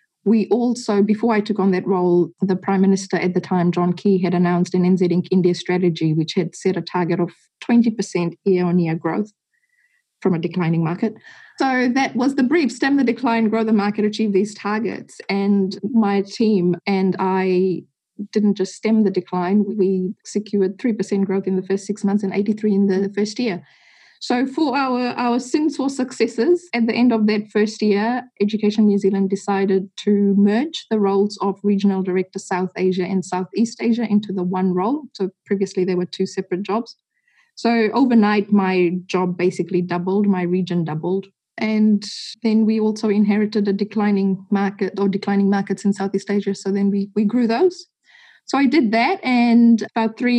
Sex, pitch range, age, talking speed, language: female, 190-225 Hz, 20-39, 180 wpm, English